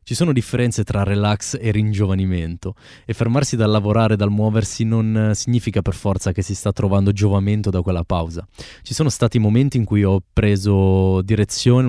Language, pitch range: Italian, 95-120 Hz